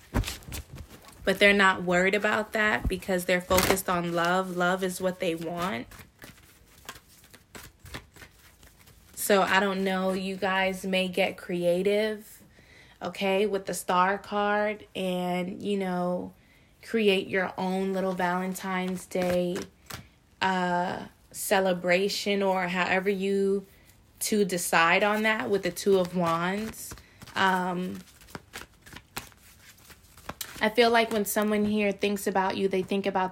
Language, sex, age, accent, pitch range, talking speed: English, female, 20-39, American, 185-205 Hz, 120 wpm